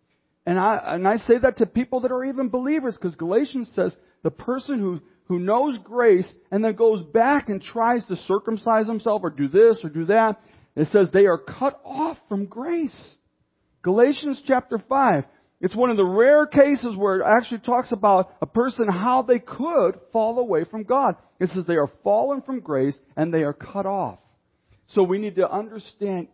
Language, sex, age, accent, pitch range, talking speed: English, male, 50-69, American, 130-215 Hz, 190 wpm